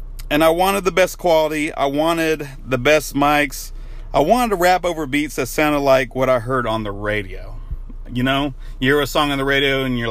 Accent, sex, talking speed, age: American, male, 220 wpm, 30-49